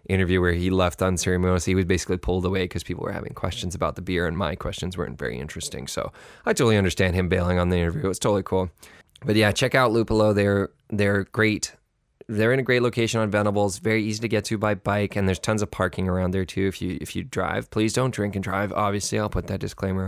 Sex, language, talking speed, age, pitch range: male, English, 245 wpm, 20-39, 95-110 Hz